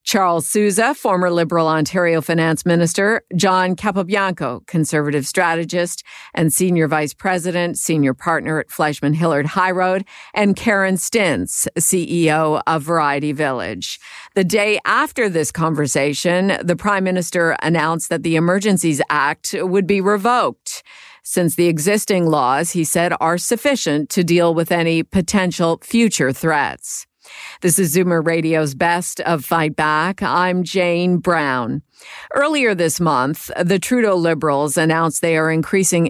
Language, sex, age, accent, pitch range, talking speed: English, female, 50-69, American, 160-185 Hz, 135 wpm